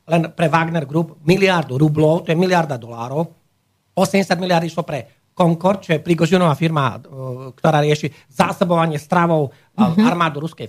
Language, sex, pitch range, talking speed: Slovak, male, 140-175 Hz, 140 wpm